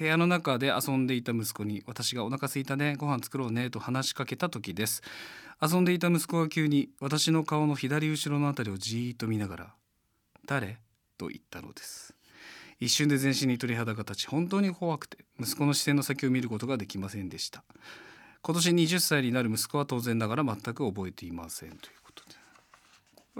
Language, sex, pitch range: Japanese, male, 110-160 Hz